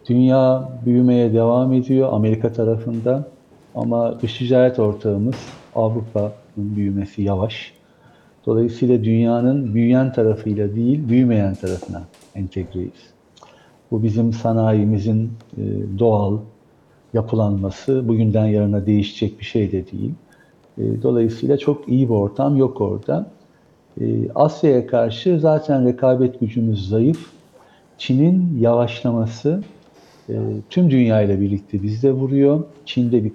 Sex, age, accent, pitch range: male, 50-69, native, 105-135 Hz